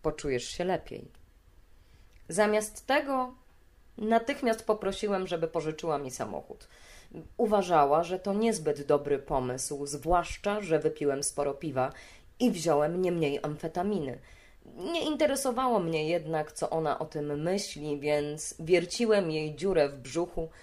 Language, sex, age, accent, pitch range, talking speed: Polish, female, 20-39, native, 150-215 Hz, 120 wpm